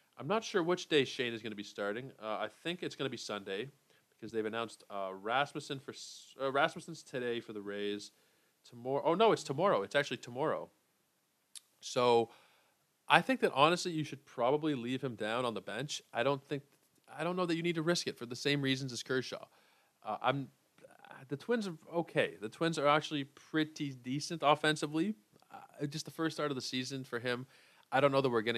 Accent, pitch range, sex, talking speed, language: American, 110-145 Hz, male, 210 wpm, English